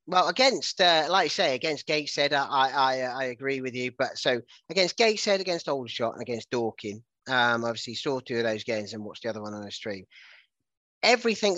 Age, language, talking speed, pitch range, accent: 30-49, English, 200 wpm, 115-145 Hz, British